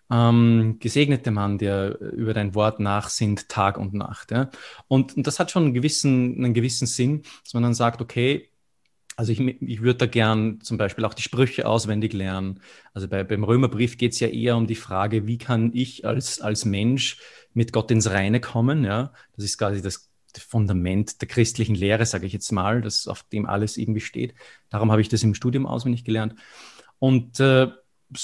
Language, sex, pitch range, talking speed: German, male, 110-125 Hz, 195 wpm